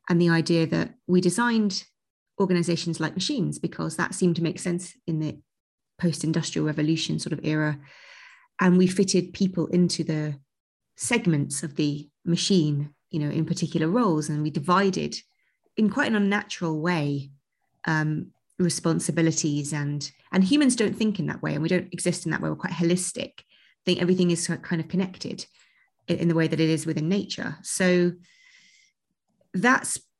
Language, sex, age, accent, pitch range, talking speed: English, female, 30-49, British, 160-195 Hz, 165 wpm